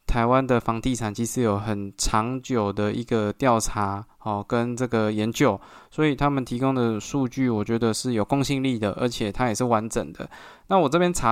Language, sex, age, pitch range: Chinese, male, 20-39, 110-140 Hz